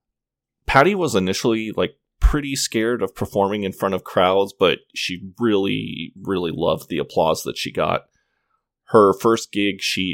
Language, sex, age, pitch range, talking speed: English, male, 20-39, 95-115 Hz, 155 wpm